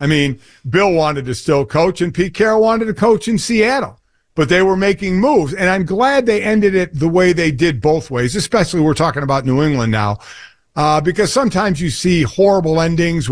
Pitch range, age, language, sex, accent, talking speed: 135-175 Hz, 50-69, English, male, American, 205 wpm